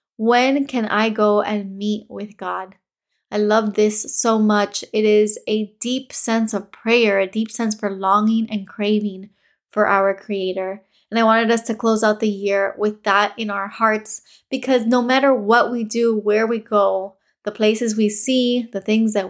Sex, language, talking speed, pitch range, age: female, English, 185 wpm, 205-230 Hz, 20-39